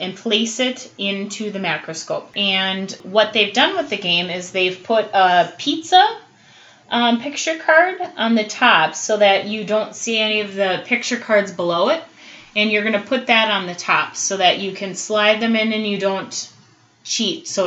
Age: 30-49